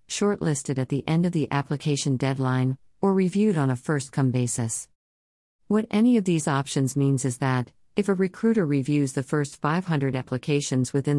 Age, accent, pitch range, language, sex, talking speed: 50-69, American, 130-175 Hz, English, female, 165 wpm